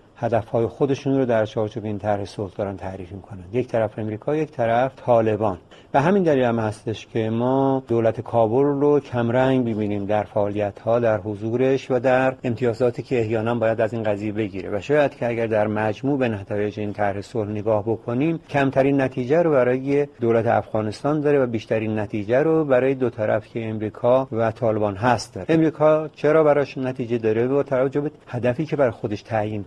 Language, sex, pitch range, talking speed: Persian, male, 110-145 Hz, 175 wpm